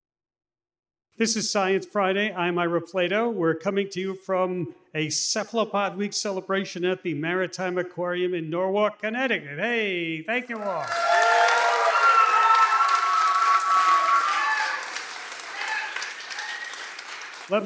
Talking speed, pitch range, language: 95 wpm, 165-220 Hz, English